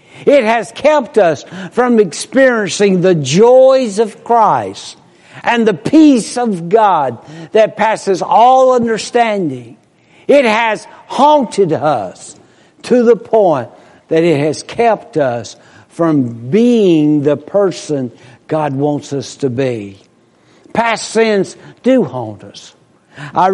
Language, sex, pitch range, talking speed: English, male, 155-220 Hz, 115 wpm